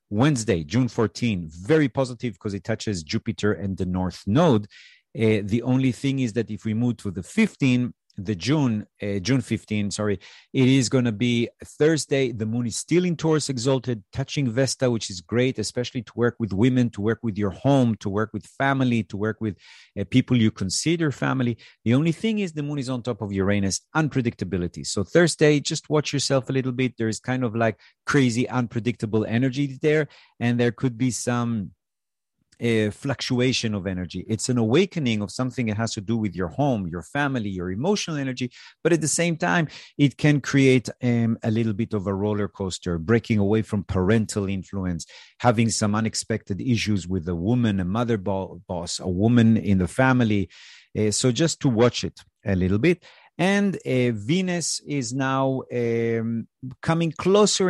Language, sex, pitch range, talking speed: English, male, 105-135 Hz, 185 wpm